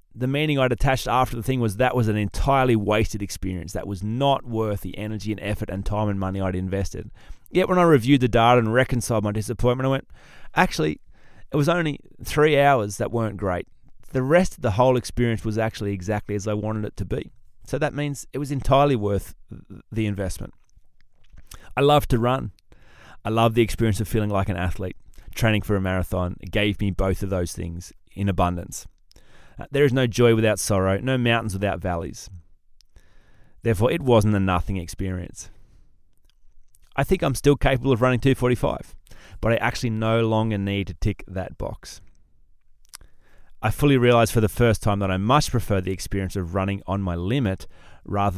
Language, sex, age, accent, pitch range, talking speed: English, male, 30-49, Australian, 95-120 Hz, 185 wpm